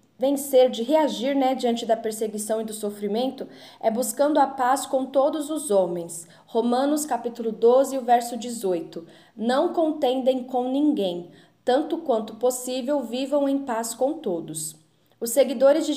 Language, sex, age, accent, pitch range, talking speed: Portuguese, female, 10-29, Brazilian, 225-270 Hz, 145 wpm